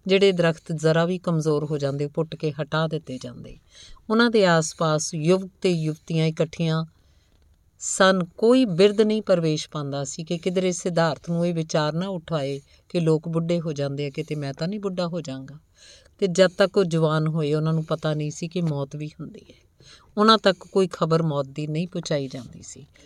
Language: Punjabi